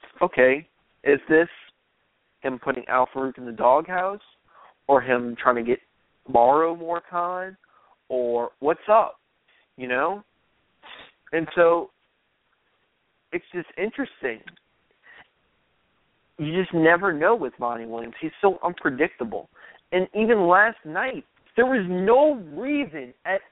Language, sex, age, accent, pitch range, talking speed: English, male, 40-59, American, 145-190 Hz, 120 wpm